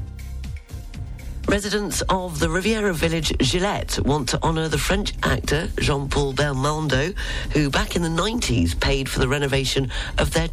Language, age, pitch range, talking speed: English, 40-59, 115-150 Hz, 140 wpm